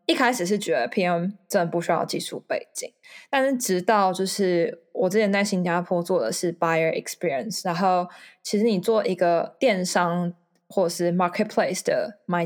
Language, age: Chinese, 20-39